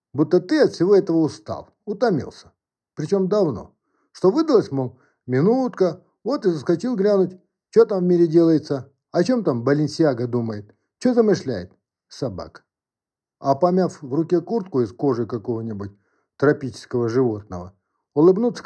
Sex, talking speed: male, 130 wpm